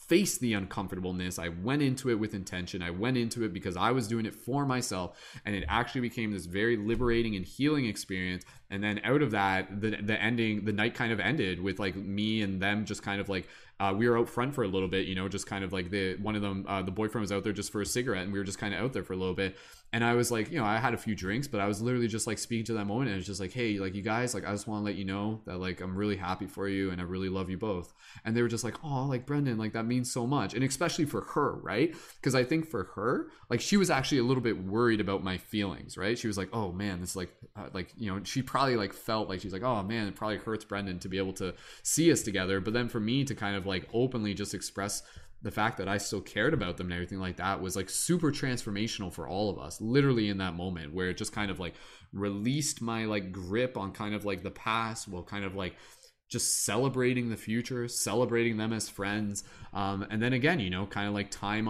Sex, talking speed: male, 275 wpm